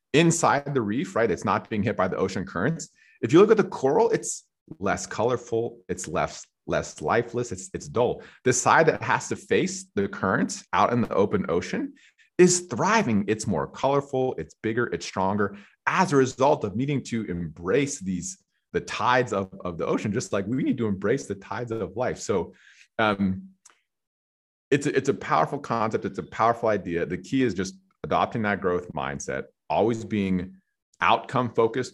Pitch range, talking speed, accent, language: 90-140 Hz, 180 wpm, American, English